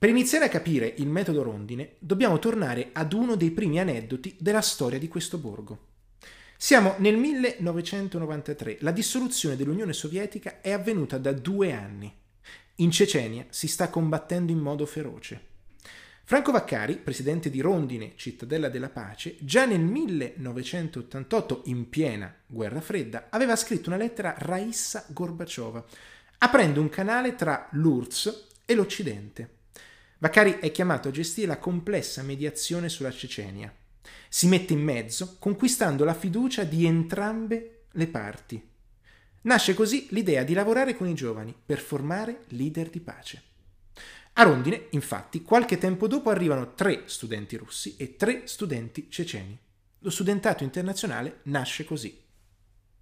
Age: 30-49